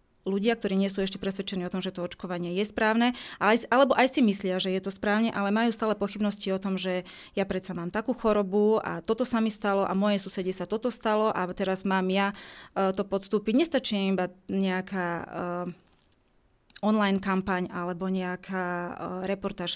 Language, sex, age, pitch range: Slovak, female, 20-39, 185-210 Hz